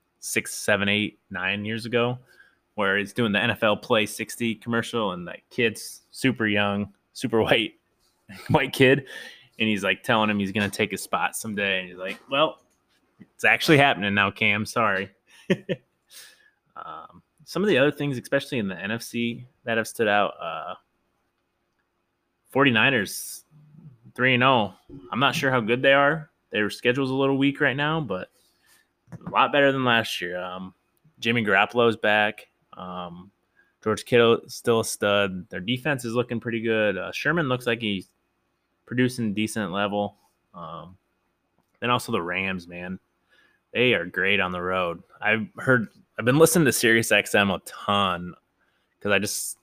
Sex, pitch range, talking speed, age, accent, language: male, 100-125 Hz, 160 wpm, 20-39, American, English